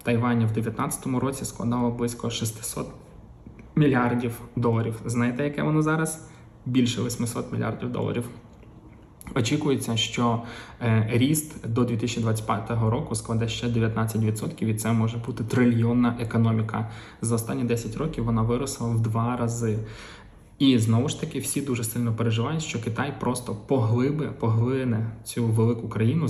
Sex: male